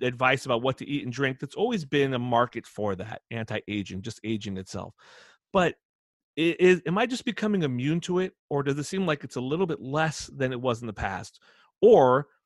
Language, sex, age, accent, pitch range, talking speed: English, male, 30-49, American, 105-140 Hz, 210 wpm